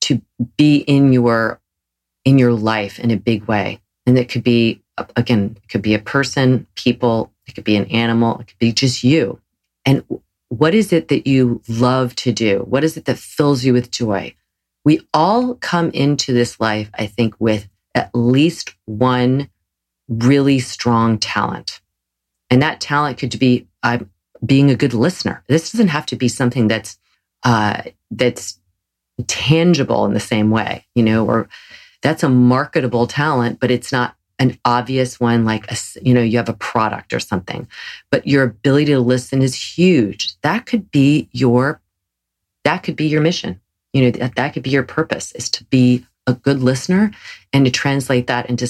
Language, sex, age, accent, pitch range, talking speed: English, female, 40-59, American, 115-140 Hz, 180 wpm